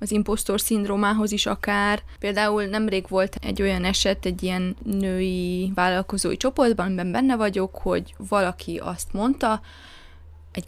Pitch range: 185-210 Hz